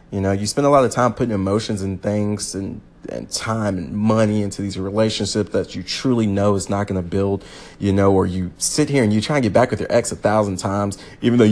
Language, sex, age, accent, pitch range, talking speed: English, male, 30-49, American, 100-120 Hz, 255 wpm